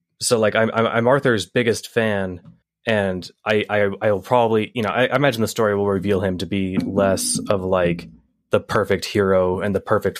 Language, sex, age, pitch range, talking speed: English, male, 20-39, 95-110 Hz, 195 wpm